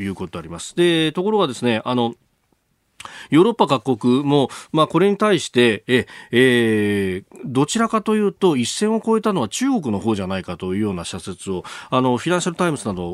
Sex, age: male, 40-59